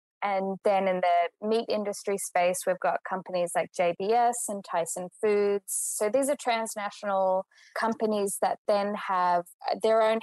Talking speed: 145 wpm